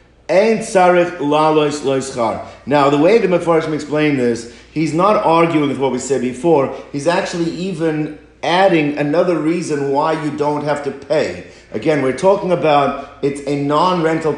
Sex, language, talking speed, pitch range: male, English, 160 wpm, 135-170 Hz